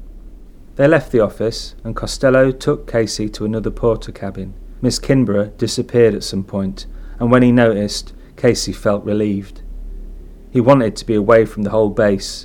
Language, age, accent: English, 30-49, British